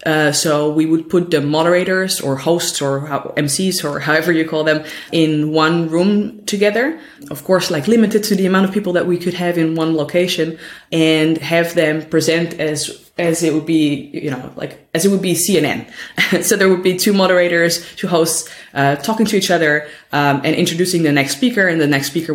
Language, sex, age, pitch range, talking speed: English, female, 20-39, 140-170 Hz, 205 wpm